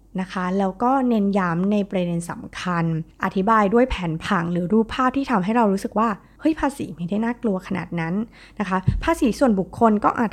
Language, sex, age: Thai, female, 20-39